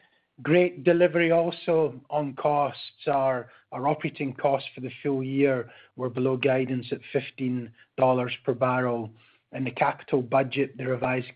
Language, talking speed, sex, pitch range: English, 135 wpm, male, 125-140 Hz